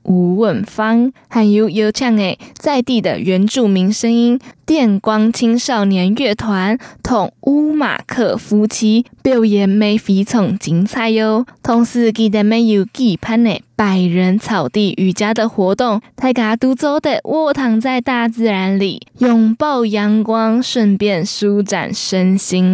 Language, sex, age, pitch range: Chinese, female, 20-39, 205-245 Hz